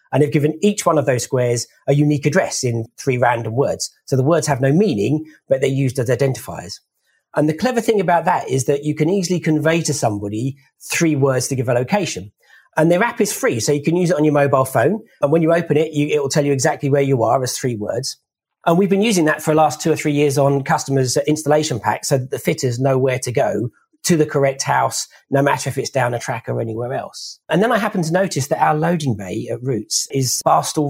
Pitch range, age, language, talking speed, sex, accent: 130-165 Hz, 40-59, English, 250 wpm, male, British